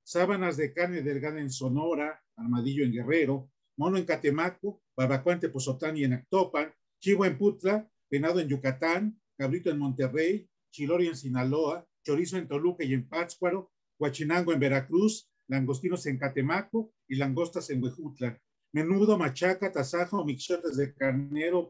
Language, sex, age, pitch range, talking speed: Spanish, male, 50-69, 140-180 Hz, 140 wpm